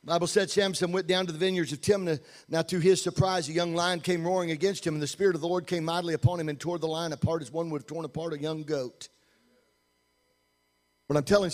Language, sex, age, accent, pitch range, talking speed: English, male, 50-69, American, 160-220 Hz, 250 wpm